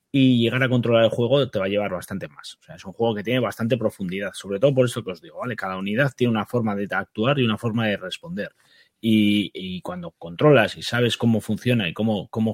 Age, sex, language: 30-49, male, Spanish